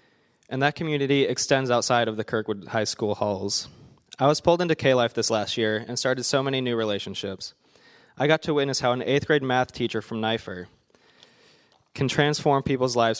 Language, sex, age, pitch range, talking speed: English, male, 20-39, 110-135 Hz, 185 wpm